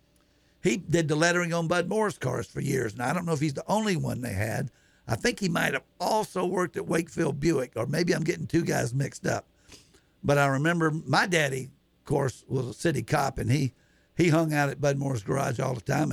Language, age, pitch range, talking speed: English, 60-79, 130-165 Hz, 230 wpm